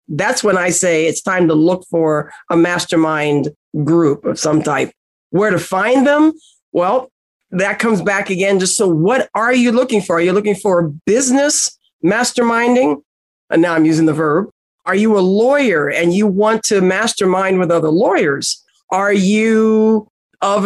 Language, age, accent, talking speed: English, 50-69, American, 170 wpm